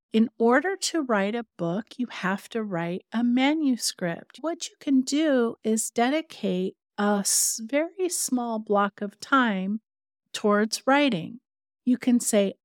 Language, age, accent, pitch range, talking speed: English, 50-69, American, 195-250 Hz, 140 wpm